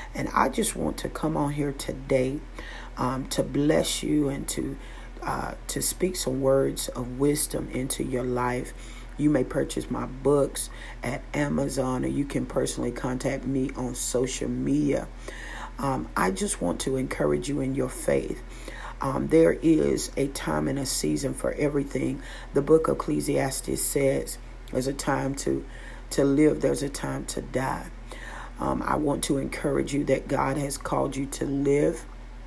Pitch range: 130-150 Hz